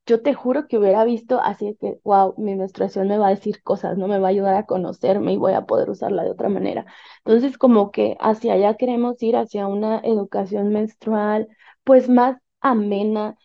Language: Spanish